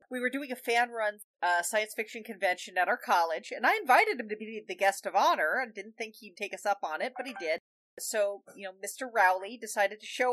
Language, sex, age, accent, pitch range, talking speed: English, female, 40-59, American, 200-245 Hz, 240 wpm